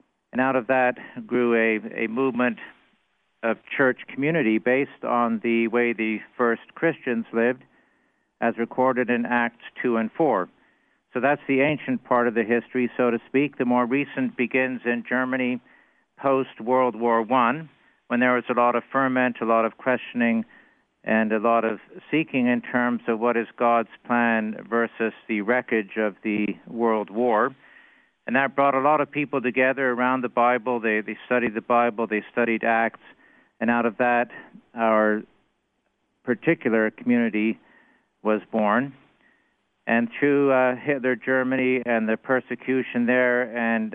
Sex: male